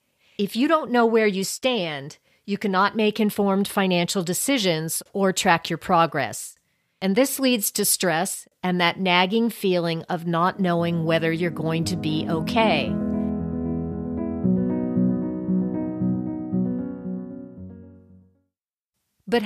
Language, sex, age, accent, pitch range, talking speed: English, female, 40-59, American, 170-225 Hz, 110 wpm